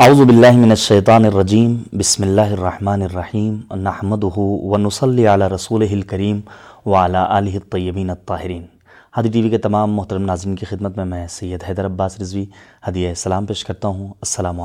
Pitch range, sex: 95-110 Hz, male